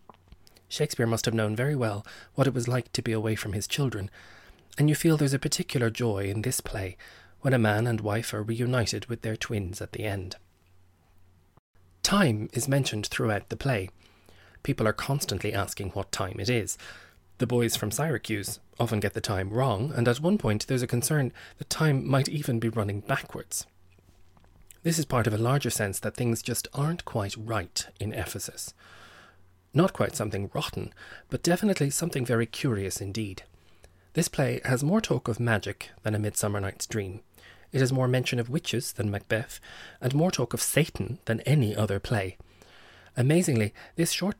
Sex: male